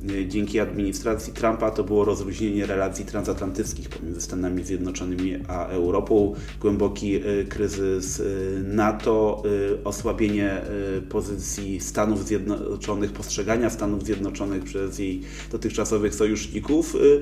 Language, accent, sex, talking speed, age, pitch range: Polish, native, male, 95 wpm, 30-49, 95-115 Hz